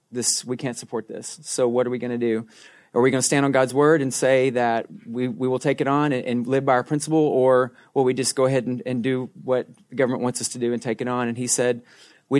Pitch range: 120-135 Hz